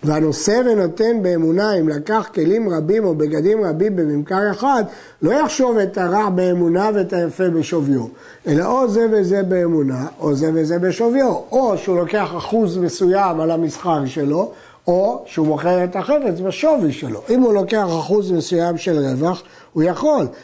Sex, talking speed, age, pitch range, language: male, 155 wpm, 60-79, 160-220 Hz, Hebrew